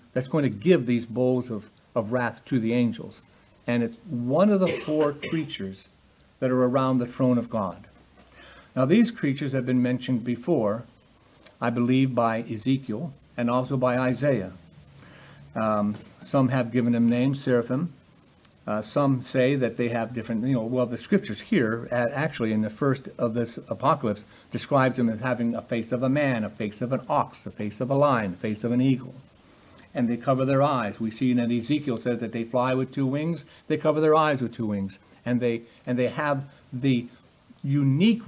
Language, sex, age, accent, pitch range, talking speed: English, male, 50-69, American, 115-150 Hz, 195 wpm